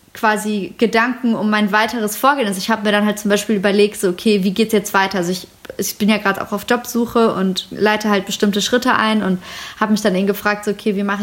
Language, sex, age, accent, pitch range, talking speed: German, female, 20-39, German, 205-255 Hz, 245 wpm